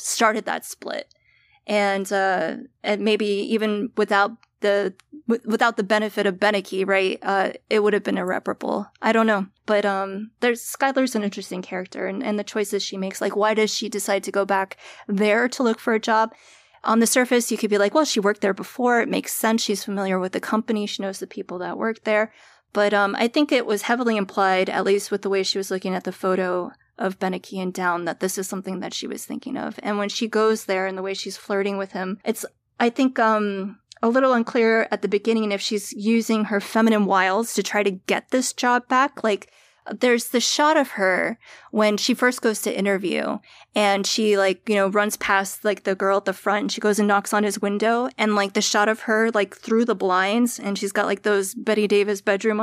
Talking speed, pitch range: 225 wpm, 195-225 Hz